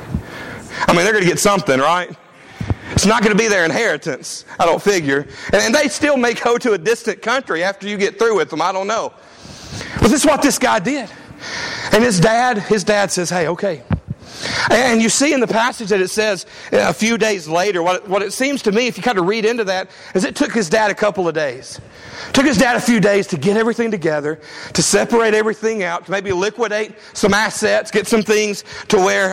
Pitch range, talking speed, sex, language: 180-230 Hz, 225 wpm, male, English